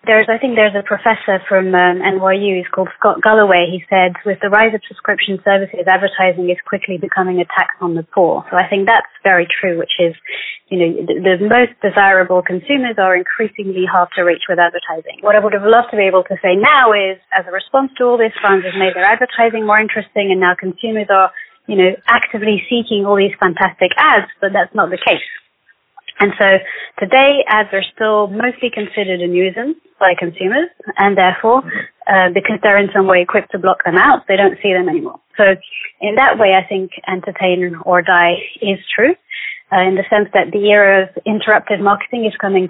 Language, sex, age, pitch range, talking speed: English, female, 30-49, 185-215 Hz, 205 wpm